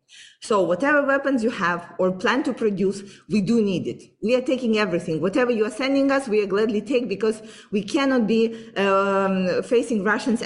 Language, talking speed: English, 190 wpm